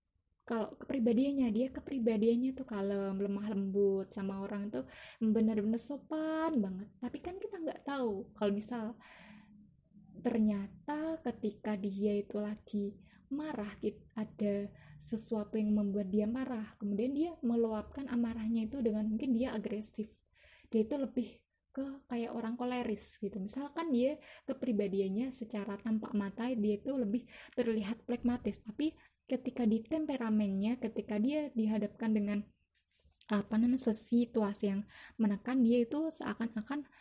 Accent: native